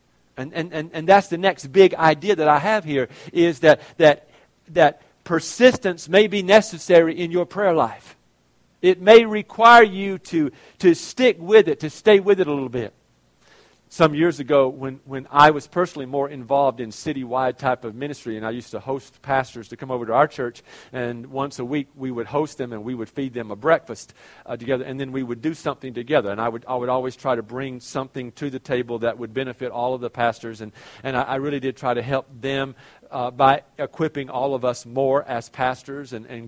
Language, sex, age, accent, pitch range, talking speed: English, male, 50-69, American, 120-150 Hz, 220 wpm